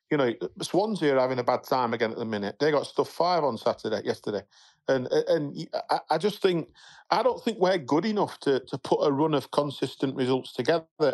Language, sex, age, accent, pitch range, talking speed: English, male, 40-59, British, 115-145 Hz, 210 wpm